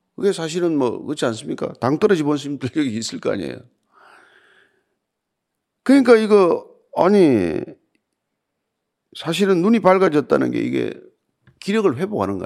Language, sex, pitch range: Korean, male, 140-200 Hz